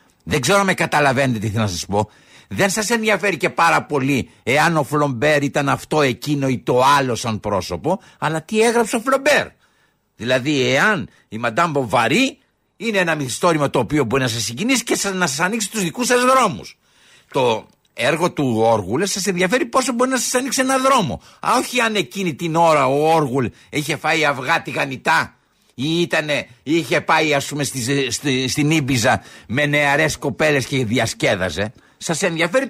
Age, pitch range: 60-79, 140-230 Hz